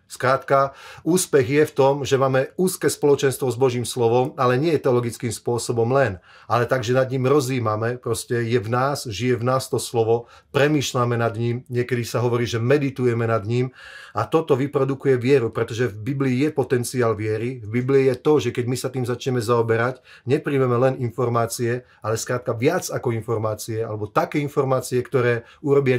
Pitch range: 120-135 Hz